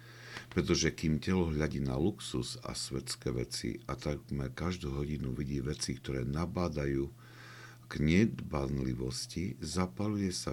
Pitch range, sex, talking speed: 70-105 Hz, male, 120 wpm